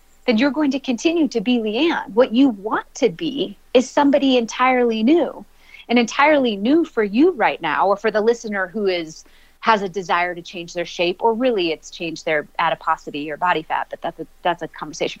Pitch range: 170-245 Hz